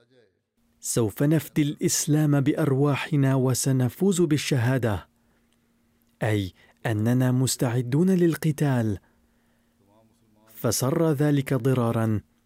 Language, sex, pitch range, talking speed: Arabic, male, 115-145 Hz, 65 wpm